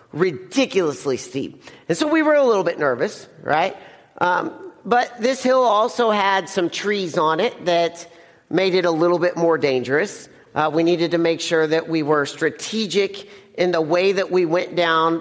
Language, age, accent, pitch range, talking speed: English, 40-59, American, 155-195 Hz, 180 wpm